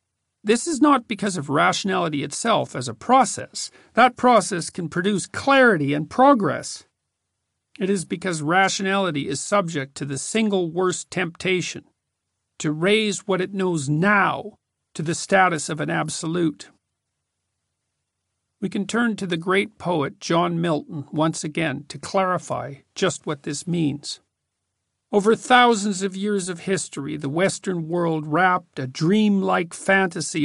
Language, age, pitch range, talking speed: Dutch, 50-69, 150-195 Hz, 140 wpm